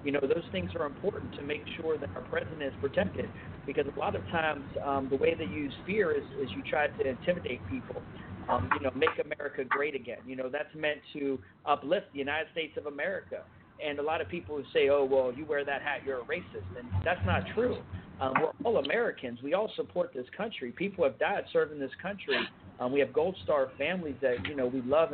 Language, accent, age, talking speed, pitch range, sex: English, American, 50-69, 230 wpm, 135-210 Hz, male